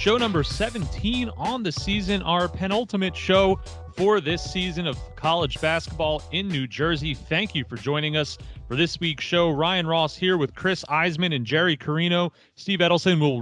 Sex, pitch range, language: male, 130-175 Hz, English